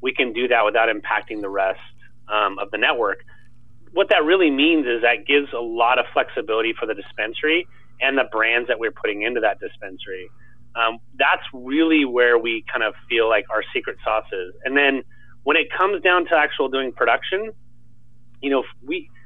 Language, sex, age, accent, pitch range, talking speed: English, male, 30-49, American, 120-145 Hz, 190 wpm